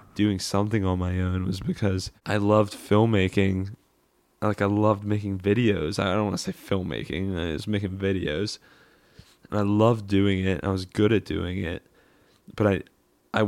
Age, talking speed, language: 10-29, 175 wpm, English